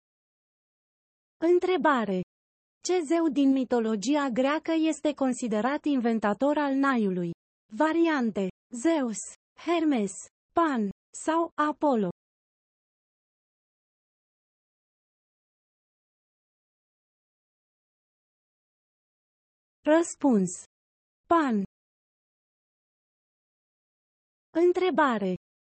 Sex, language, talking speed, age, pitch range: female, Romanian, 45 wpm, 30-49, 225-320 Hz